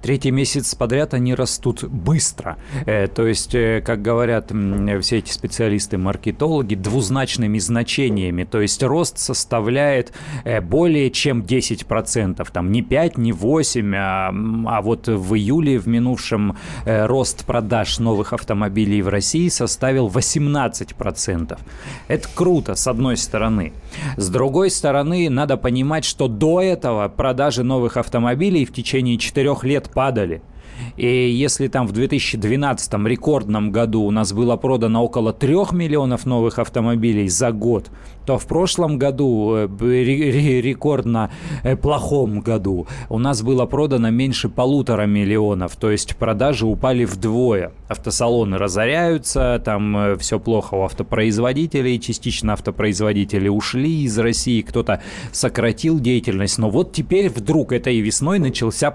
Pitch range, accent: 110-135 Hz, native